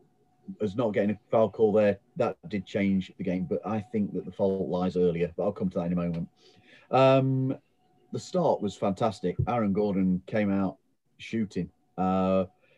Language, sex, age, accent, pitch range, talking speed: English, male, 40-59, British, 95-110 Hz, 185 wpm